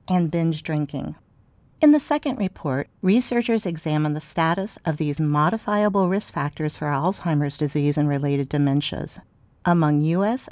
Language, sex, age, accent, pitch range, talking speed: English, female, 50-69, American, 150-215 Hz, 135 wpm